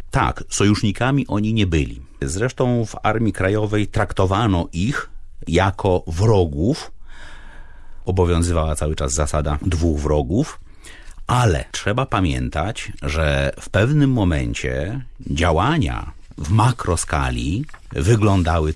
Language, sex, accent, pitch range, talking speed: Polish, male, native, 75-110 Hz, 95 wpm